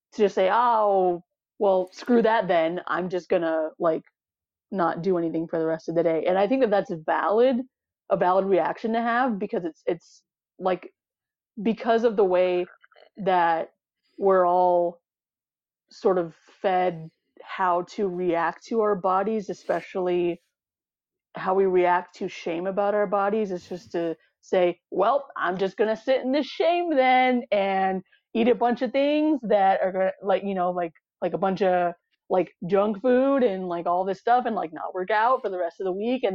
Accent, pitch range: American, 180-220 Hz